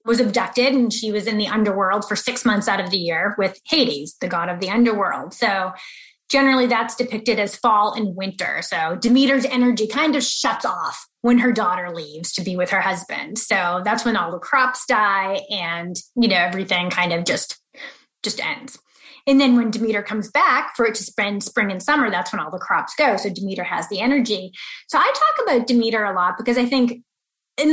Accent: American